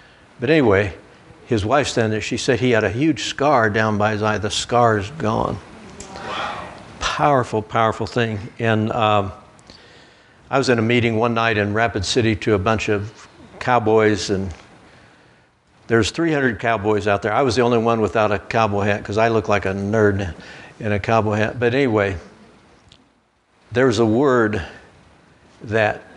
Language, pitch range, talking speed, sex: English, 105-120 Hz, 165 wpm, male